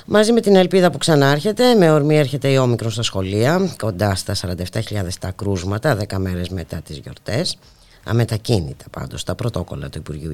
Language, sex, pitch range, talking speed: Greek, female, 95-145 Hz, 170 wpm